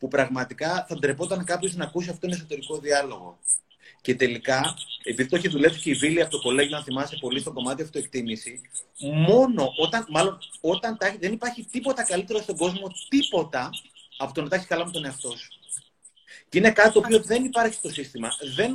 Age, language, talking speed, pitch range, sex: 30-49, Greek, 190 wpm, 145-200 Hz, male